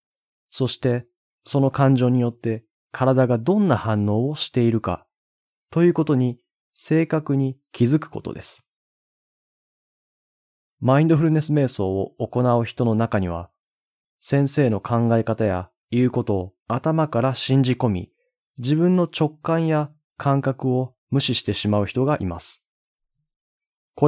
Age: 20-39